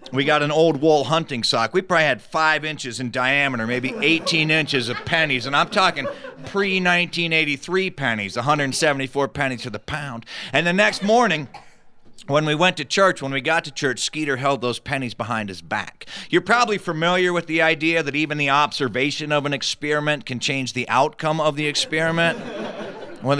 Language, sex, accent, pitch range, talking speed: English, male, American, 130-175 Hz, 180 wpm